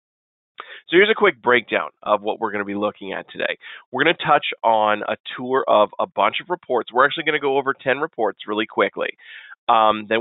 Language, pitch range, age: English, 110-155 Hz, 30-49